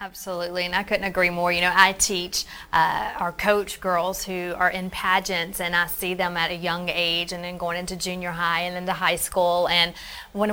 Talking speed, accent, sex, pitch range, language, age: 215 wpm, American, female, 175-215 Hz, English, 20-39